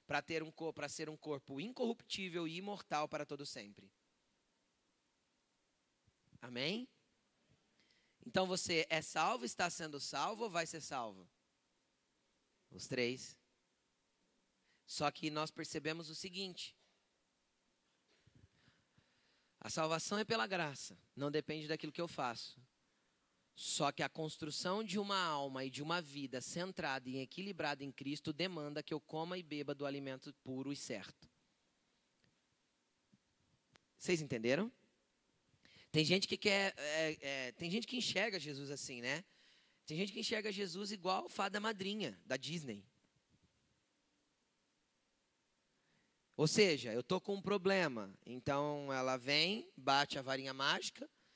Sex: male